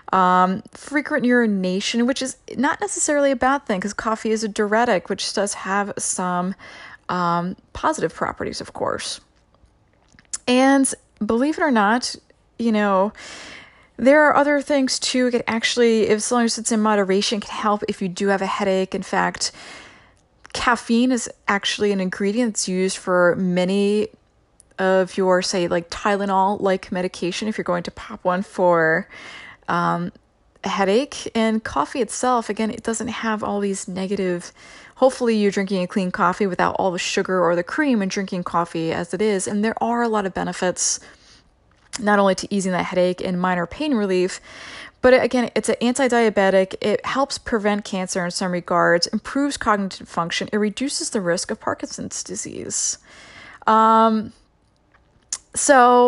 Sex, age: female, 20-39